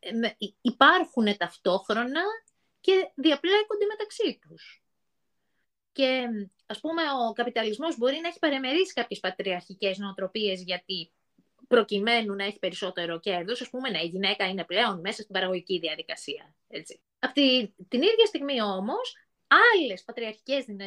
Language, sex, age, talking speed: Greek, female, 20-39, 120 wpm